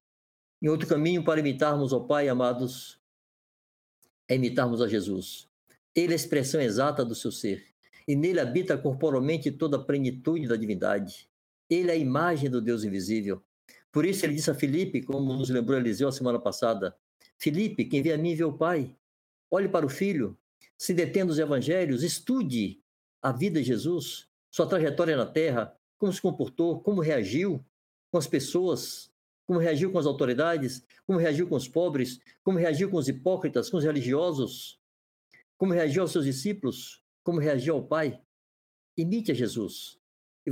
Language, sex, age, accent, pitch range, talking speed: Portuguese, male, 60-79, Brazilian, 125-170 Hz, 165 wpm